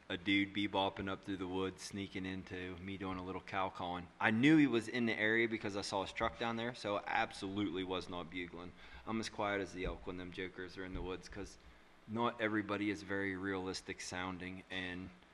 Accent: American